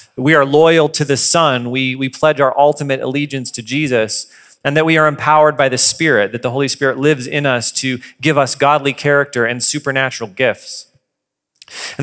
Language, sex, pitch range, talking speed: English, male, 145-185 Hz, 190 wpm